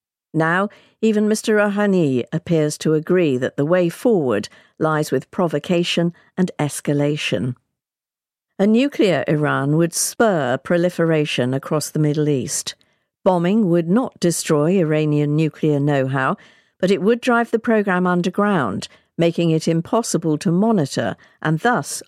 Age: 50-69